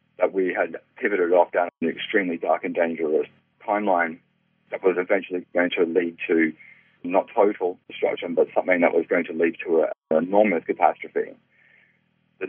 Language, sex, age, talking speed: English, male, 40-59, 165 wpm